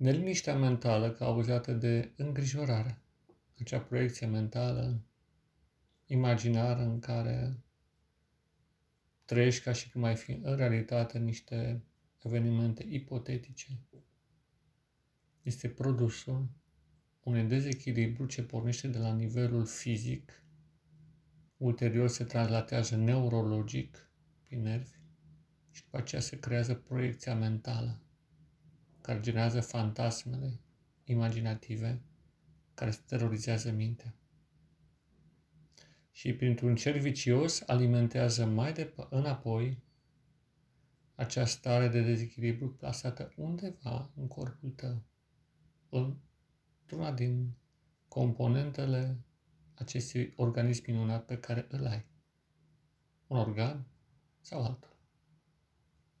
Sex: male